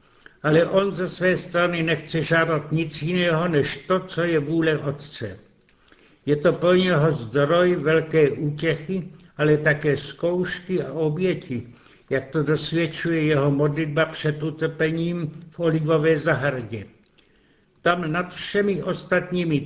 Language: Czech